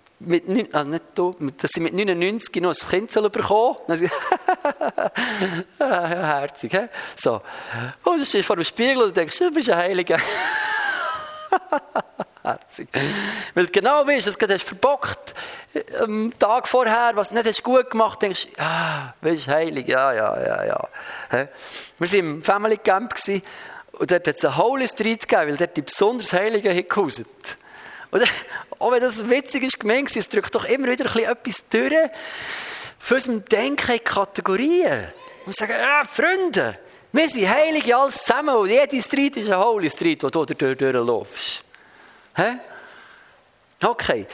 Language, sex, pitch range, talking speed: German, male, 195-295 Hz, 150 wpm